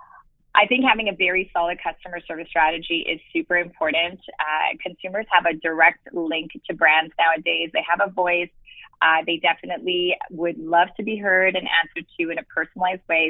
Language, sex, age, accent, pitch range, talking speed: English, female, 20-39, American, 165-200 Hz, 180 wpm